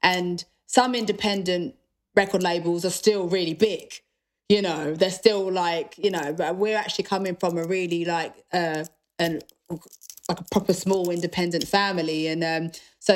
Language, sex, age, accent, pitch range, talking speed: German, female, 20-39, British, 170-215 Hz, 155 wpm